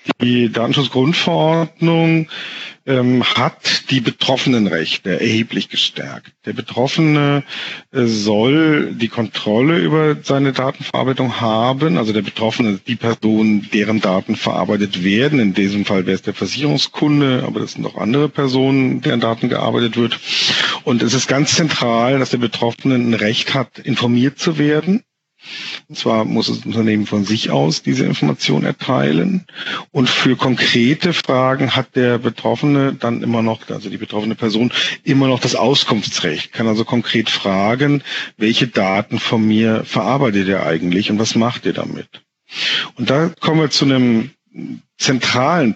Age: 50-69